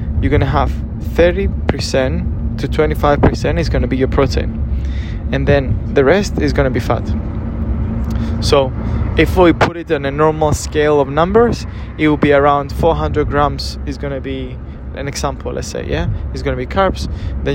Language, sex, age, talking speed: English, male, 20-39, 185 wpm